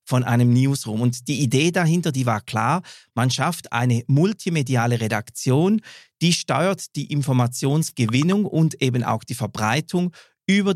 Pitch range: 120-160 Hz